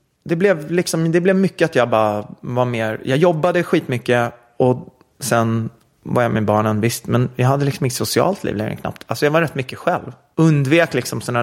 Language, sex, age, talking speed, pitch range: English, male, 30-49, 195 wpm, 110-150 Hz